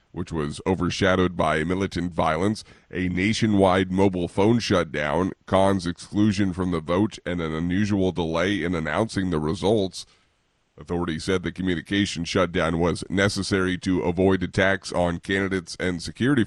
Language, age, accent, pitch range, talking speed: English, 30-49, American, 90-100 Hz, 140 wpm